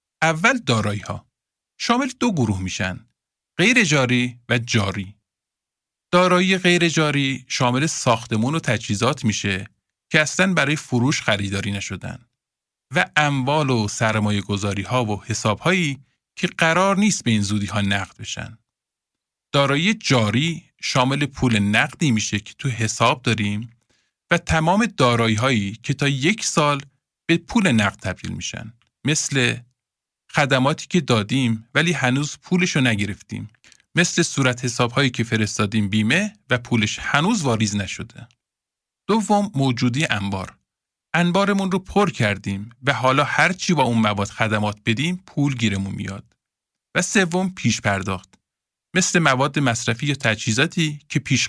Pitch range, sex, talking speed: 110-160 Hz, male, 135 wpm